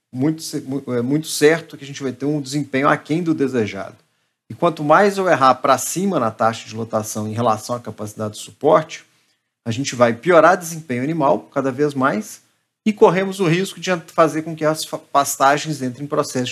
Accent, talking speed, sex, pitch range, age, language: Brazilian, 195 wpm, male, 125-160 Hz, 40-59, Portuguese